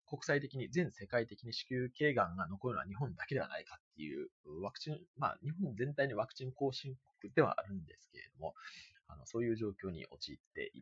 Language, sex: Japanese, male